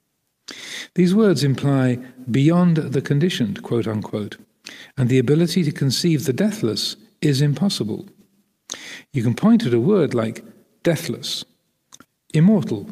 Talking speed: 115 wpm